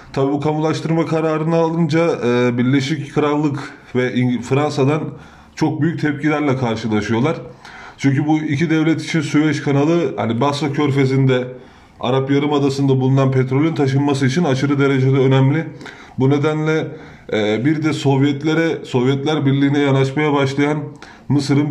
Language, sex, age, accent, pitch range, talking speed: Turkish, male, 30-49, native, 130-150 Hz, 115 wpm